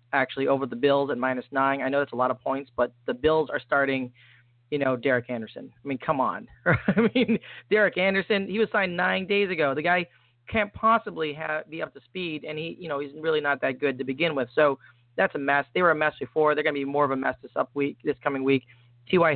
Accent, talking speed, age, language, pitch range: American, 255 wpm, 30-49, English, 130-155 Hz